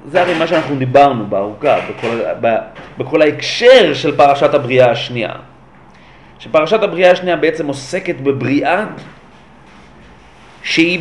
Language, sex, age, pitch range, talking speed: Hebrew, male, 40-59, 165-220 Hz, 110 wpm